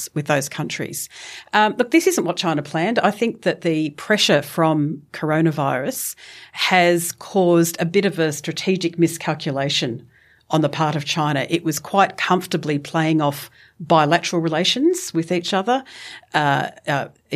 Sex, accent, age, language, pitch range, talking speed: female, Australian, 40-59, English, 150-180 Hz, 150 wpm